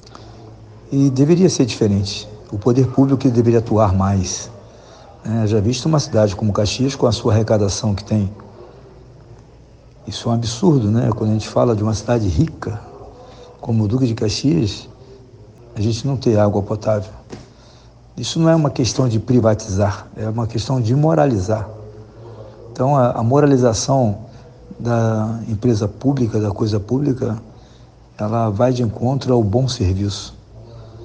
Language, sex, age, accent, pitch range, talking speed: Portuguese, male, 60-79, Brazilian, 105-125 Hz, 145 wpm